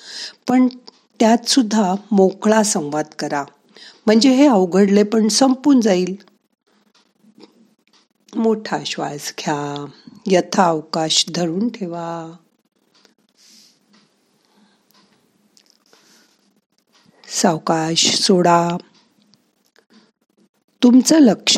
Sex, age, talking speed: female, 50-69, 30 wpm